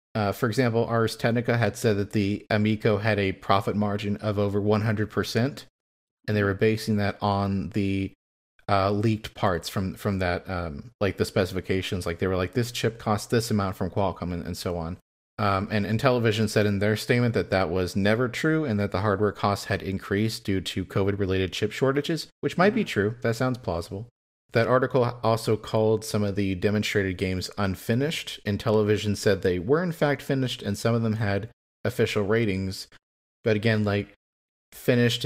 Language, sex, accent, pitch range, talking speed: English, male, American, 100-115 Hz, 185 wpm